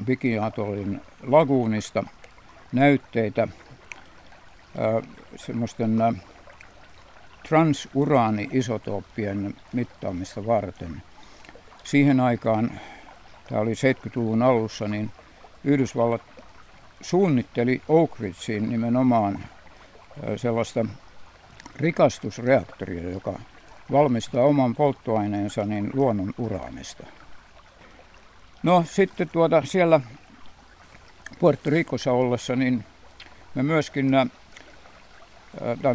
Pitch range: 105-135 Hz